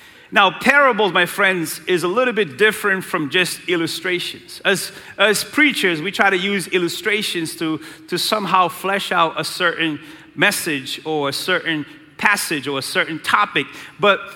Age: 40-59